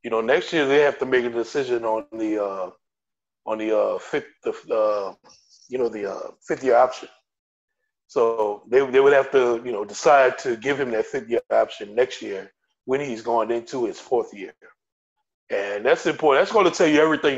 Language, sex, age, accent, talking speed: English, male, 20-39, American, 205 wpm